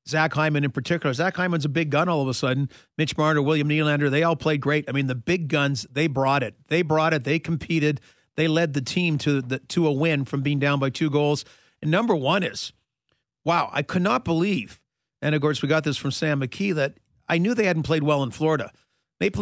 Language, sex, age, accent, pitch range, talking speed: English, male, 40-59, American, 145-170 Hz, 235 wpm